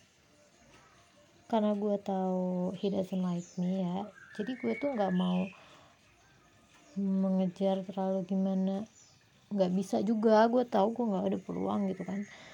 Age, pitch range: 20-39, 190-240 Hz